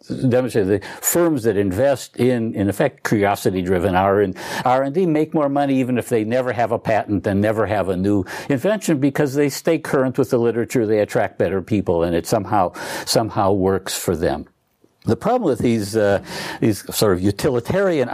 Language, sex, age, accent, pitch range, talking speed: Swedish, male, 60-79, American, 100-145 Hz, 185 wpm